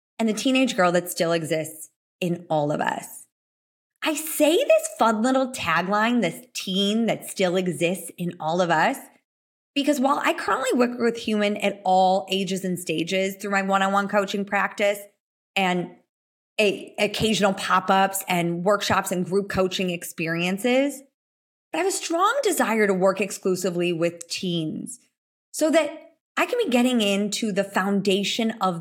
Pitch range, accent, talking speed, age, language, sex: 190-255 Hz, American, 155 wpm, 20-39, English, female